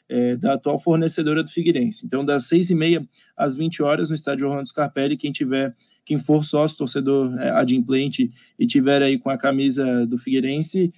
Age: 20-39